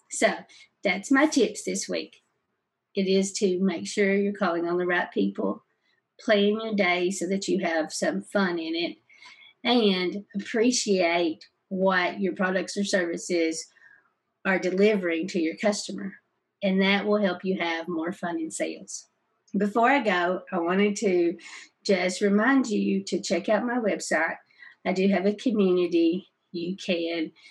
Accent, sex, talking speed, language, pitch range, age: American, female, 155 wpm, English, 175-205 Hz, 50-69